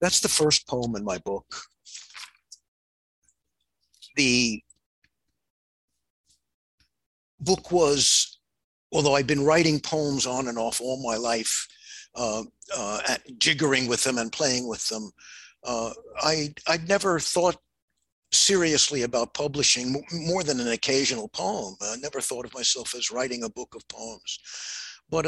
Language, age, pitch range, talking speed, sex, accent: English, 60-79, 125-165 Hz, 130 wpm, male, American